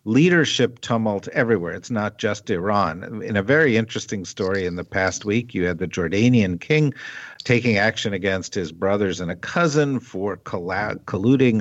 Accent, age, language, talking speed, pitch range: American, 50-69, English, 160 wpm, 100-125 Hz